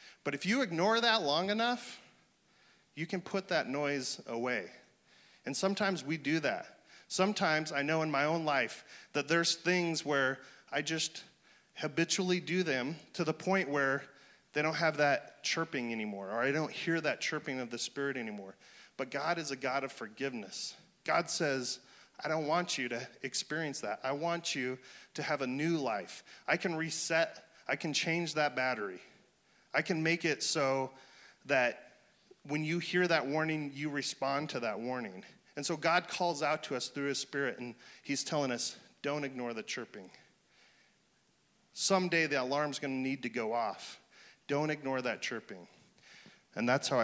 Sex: male